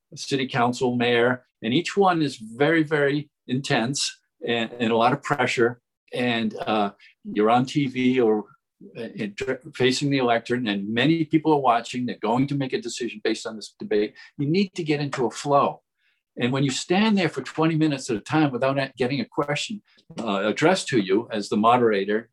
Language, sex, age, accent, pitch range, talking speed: English, male, 50-69, American, 120-160 Hz, 190 wpm